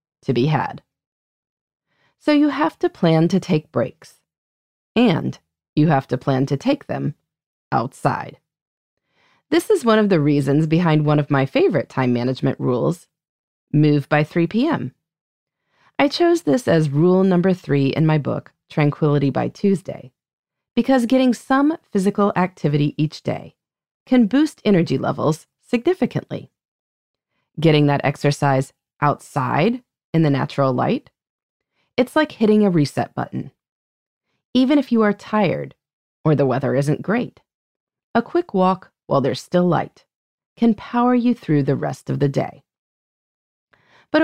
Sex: female